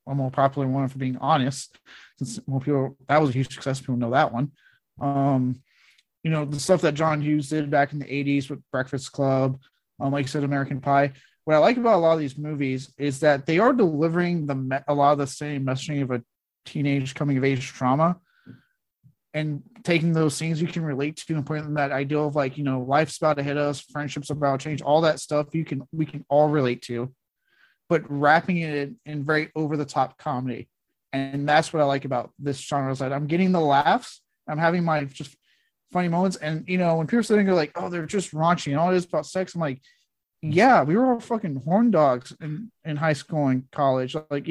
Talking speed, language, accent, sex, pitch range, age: 225 wpm, English, American, male, 140-165 Hz, 30-49